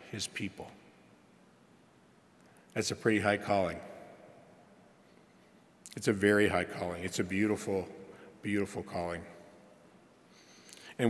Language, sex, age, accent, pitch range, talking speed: English, male, 50-69, American, 100-125 Hz, 95 wpm